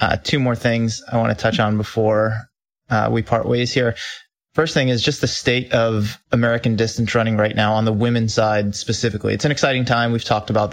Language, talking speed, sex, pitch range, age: English, 220 wpm, male, 110-120 Hz, 30-49